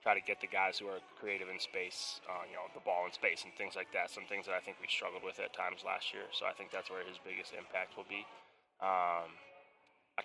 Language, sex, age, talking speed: English, male, 20-39, 265 wpm